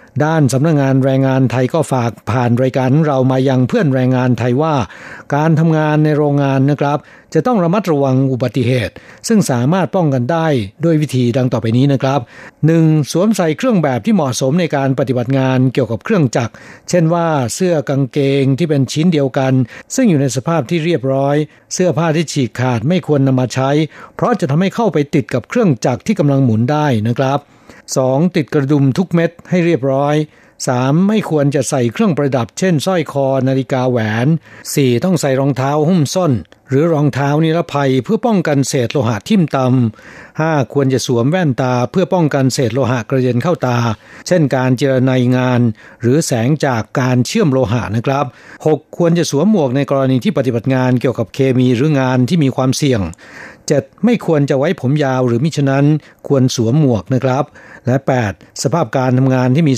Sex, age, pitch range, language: male, 60-79, 130-160 Hz, Thai